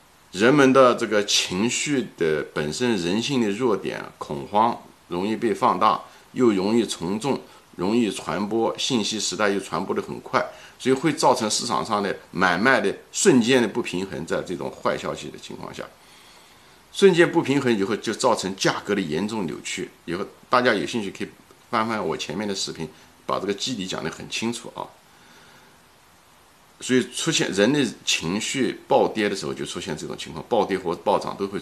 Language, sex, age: Chinese, male, 50-69